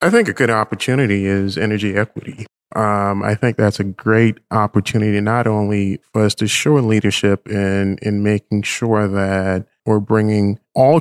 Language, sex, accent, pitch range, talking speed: English, male, American, 105-120 Hz, 165 wpm